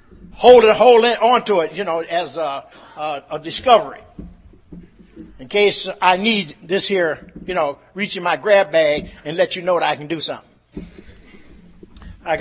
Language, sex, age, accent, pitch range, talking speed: English, male, 60-79, American, 150-190 Hz, 170 wpm